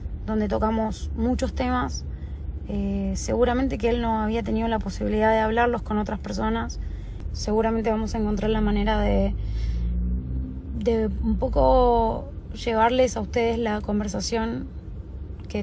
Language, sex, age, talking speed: Spanish, female, 20-39, 130 wpm